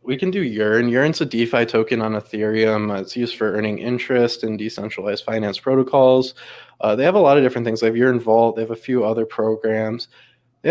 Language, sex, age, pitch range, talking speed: English, male, 20-39, 110-125 Hz, 220 wpm